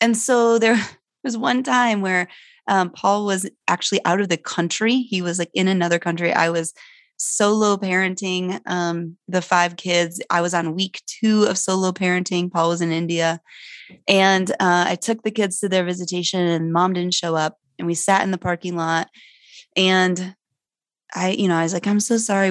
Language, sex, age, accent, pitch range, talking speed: English, female, 20-39, American, 180-225 Hz, 190 wpm